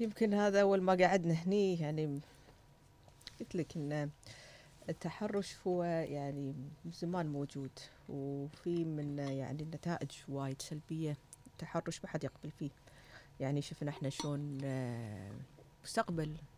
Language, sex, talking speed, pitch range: Arabic, female, 110 wpm, 135-165 Hz